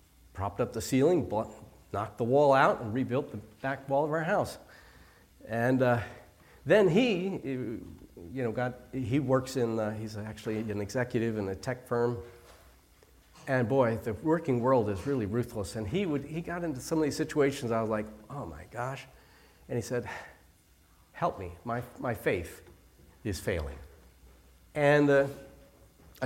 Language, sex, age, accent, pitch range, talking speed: English, male, 50-69, American, 105-150 Hz, 160 wpm